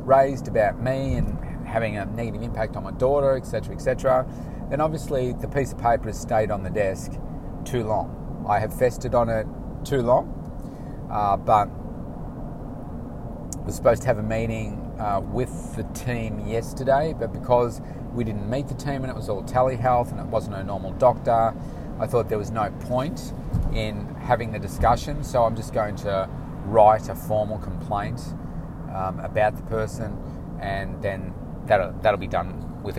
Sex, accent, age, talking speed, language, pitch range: male, Australian, 30-49, 175 wpm, English, 100-125 Hz